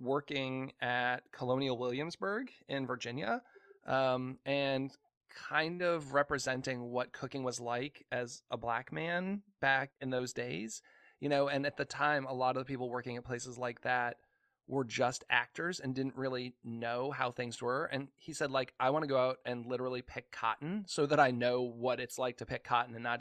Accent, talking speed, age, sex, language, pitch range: American, 190 wpm, 20-39, male, English, 120-135 Hz